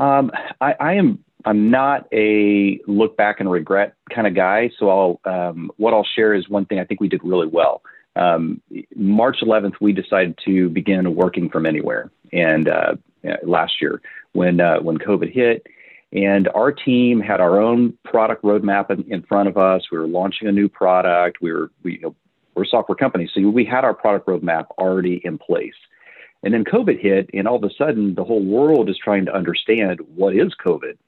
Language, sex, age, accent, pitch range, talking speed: English, male, 40-59, American, 95-110 Hz, 200 wpm